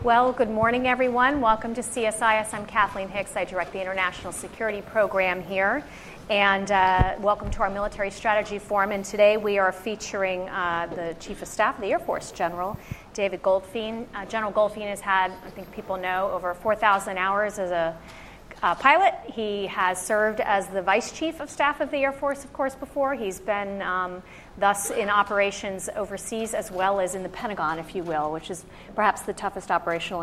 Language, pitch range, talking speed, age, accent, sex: English, 190-225 Hz, 190 wpm, 30-49, American, female